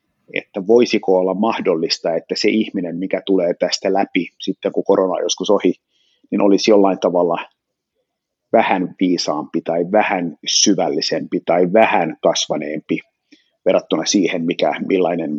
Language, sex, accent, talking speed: Finnish, male, native, 125 wpm